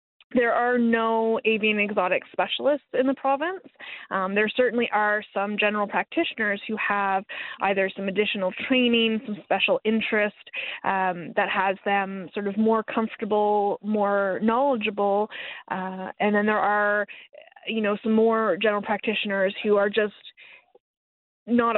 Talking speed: 140 wpm